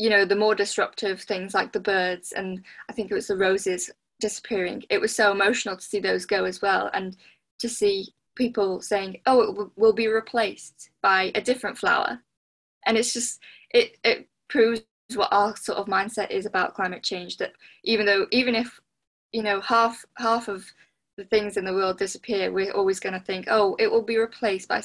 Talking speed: 200 wpm